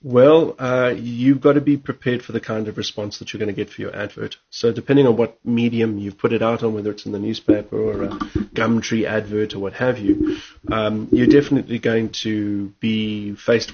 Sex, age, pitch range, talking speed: male, 30-49, 105-125 Hz, 220 wpm